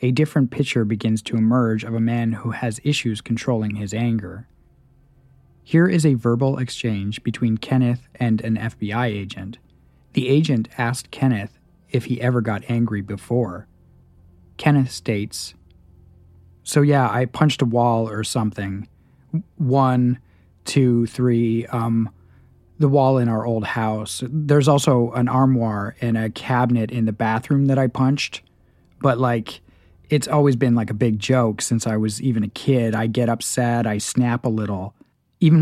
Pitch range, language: 110-125 Hz, English